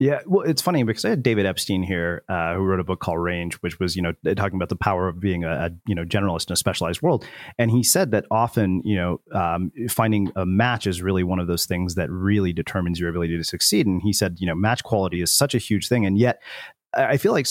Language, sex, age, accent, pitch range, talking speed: English, male, 30-49, American, 90-110 Hz, 265 wpm